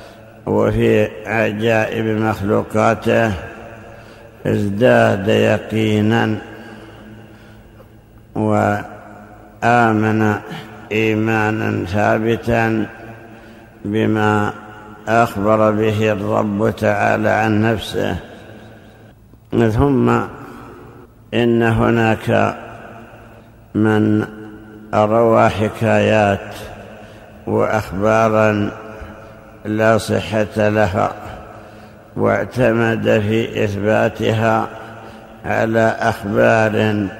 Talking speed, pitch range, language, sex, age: 50 wpm, 110-115 Hz, Arabic, male, 60-79